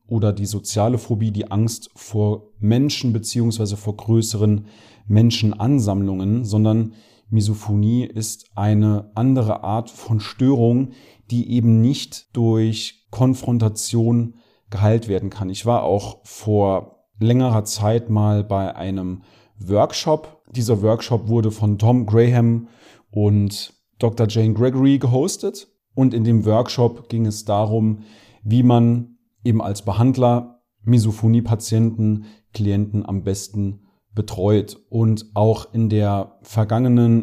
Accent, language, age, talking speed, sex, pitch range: German, German, 40-59, 115 wpm, male, 105-120 Hz